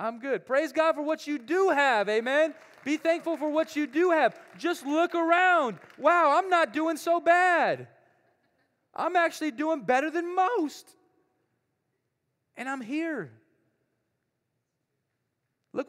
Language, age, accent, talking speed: English, 30-49, American, 135 wpm